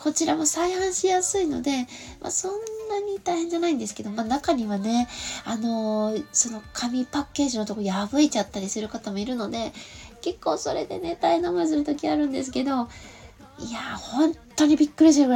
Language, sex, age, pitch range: Japanese, female, 20-39, 215-320 Hz